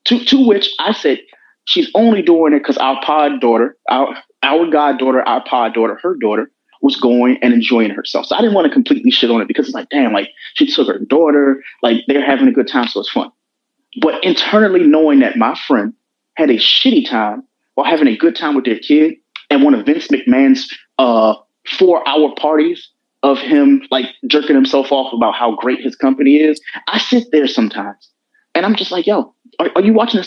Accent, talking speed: American, 210 wpm